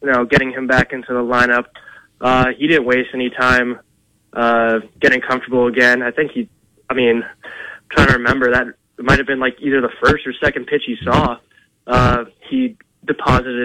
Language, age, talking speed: English, 20-39, 195 wpm